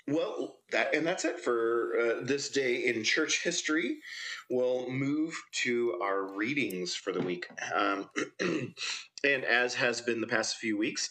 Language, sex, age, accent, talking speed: English, male, 30-49, American, 155 wpm